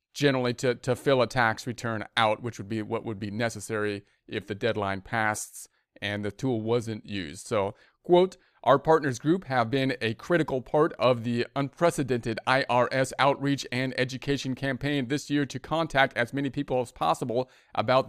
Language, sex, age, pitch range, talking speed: English, male, 40-59, 125-145 Hz, 175 wpm